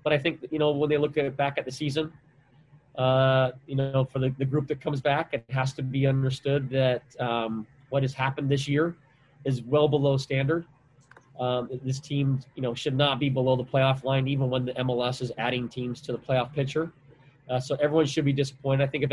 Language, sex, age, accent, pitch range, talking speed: English, male, 30-49, American, 125-140 Hz, 225 wpm